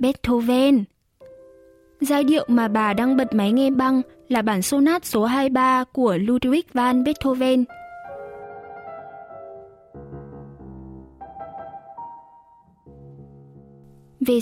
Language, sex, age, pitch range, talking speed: Vietnamese, female, 10-29, 215-275 Hz, 85 wpm